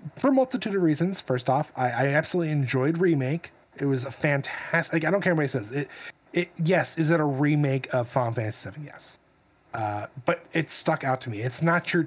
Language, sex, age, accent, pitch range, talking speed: English, male, 30-49, American, 135-165 Hz, 225 wpm